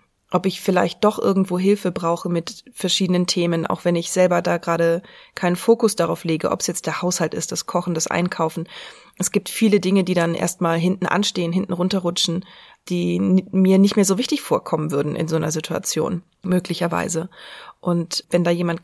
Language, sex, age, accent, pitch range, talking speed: German, female, 20-39, German, 170-195 Hz, 190 wpm